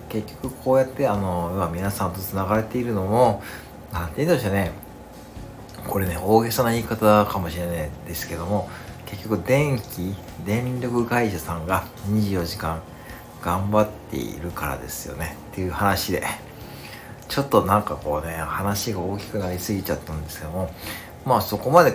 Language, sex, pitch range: Japanese, male, 85-110 Hz